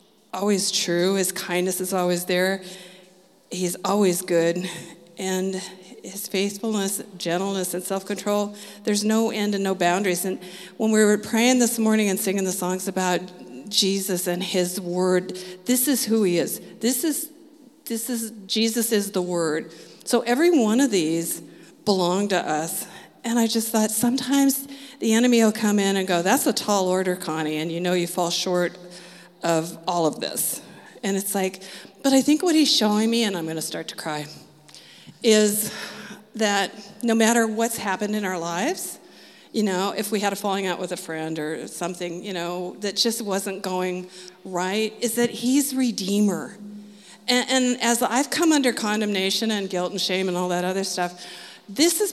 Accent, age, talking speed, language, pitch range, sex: American, 50-69, 175 wpm, English, 180-225 Hz, female